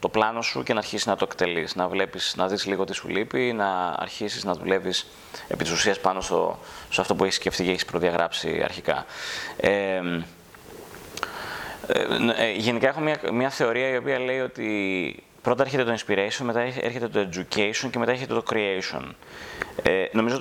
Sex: male